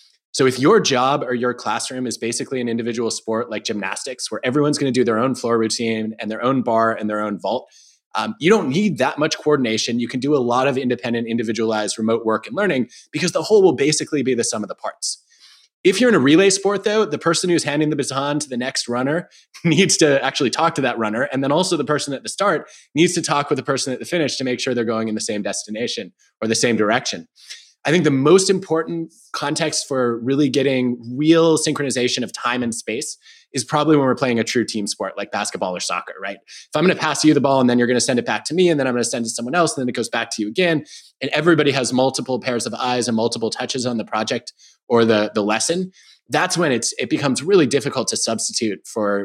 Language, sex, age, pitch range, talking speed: English, male, 20-39, 115-155 Hz, 250 wpm